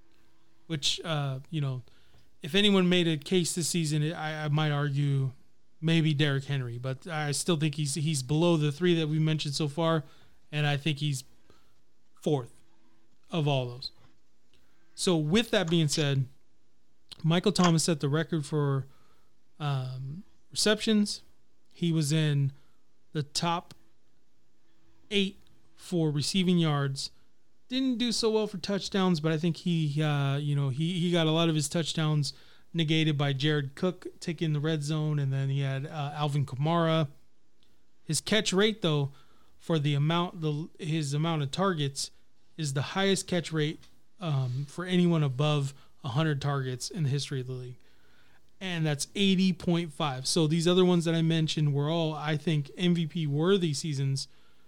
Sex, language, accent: male, English, American